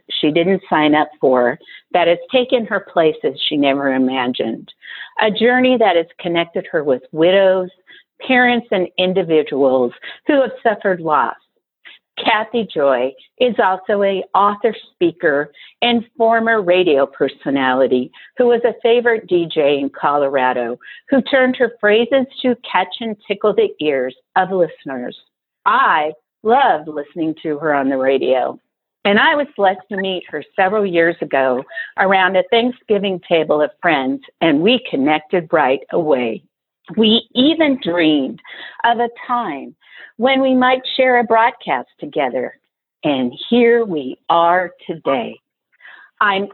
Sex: female